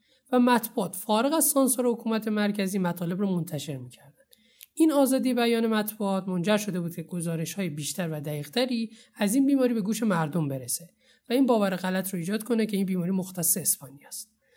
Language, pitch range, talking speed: Persian, 180-235 Hz, 175 wpm